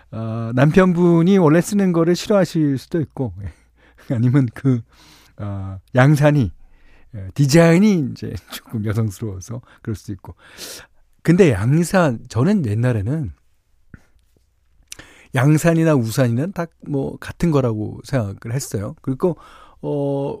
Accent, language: native, Korean